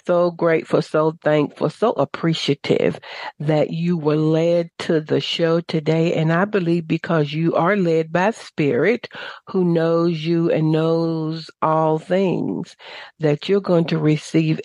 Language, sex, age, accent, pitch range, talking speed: English, female, 60-79, American, 155-185 Hz, 145 wpm